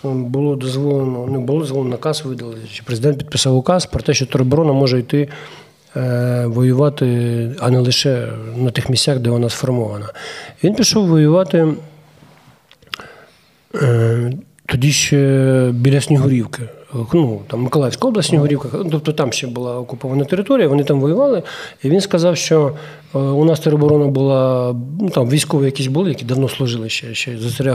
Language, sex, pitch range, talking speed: Ukrainian, male, 125-155 Hz, 145 wpm